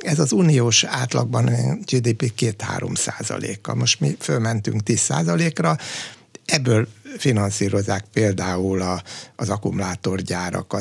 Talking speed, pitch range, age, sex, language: 100 wpm, 100-125 Hz, 60-79, male, Hungarian